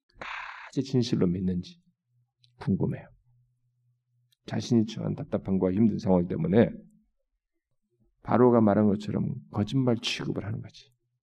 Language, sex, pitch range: Korean, male, 105-145 Hz